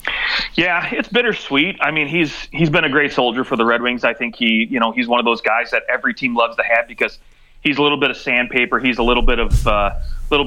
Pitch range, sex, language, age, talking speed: 110-135 Hz, male, English, 30-49, 260 wpm